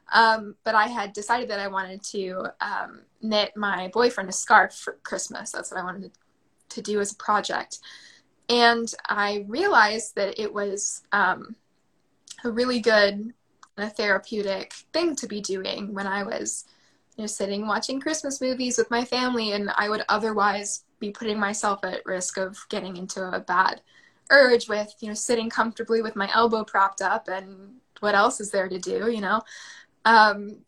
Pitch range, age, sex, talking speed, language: 195-225 Hz, 10-29, female, 175 wpm, English